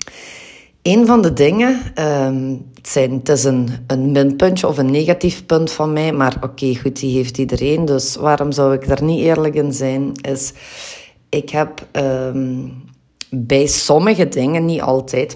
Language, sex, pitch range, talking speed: Dutch, female, 130-160 Hz, 150 wpm